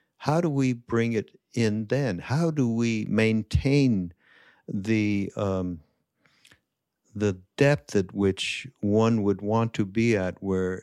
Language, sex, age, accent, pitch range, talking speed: English, male, 60-79, American, 95-115 Hz, 135 wpm